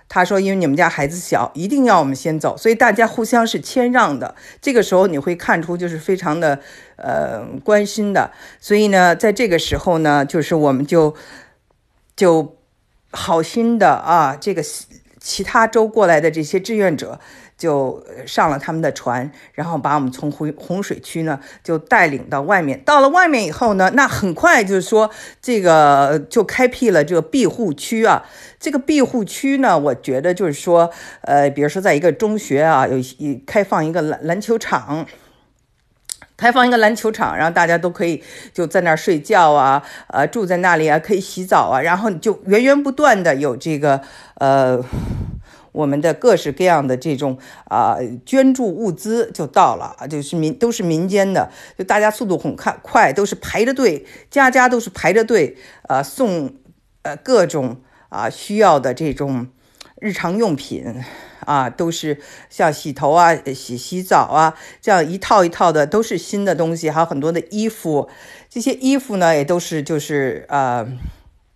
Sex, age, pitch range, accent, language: female, 50-69, 150-220 Hz, native, Chinese